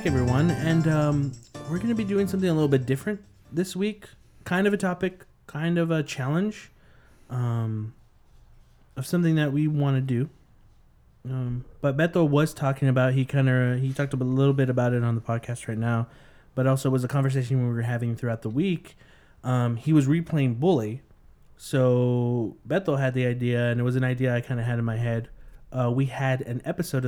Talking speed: 195 wpm